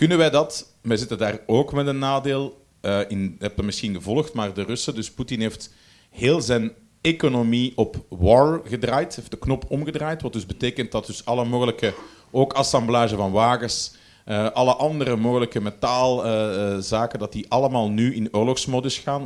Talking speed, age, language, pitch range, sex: 175 wpm, 40-59, Dutch, 105-130 Hz, male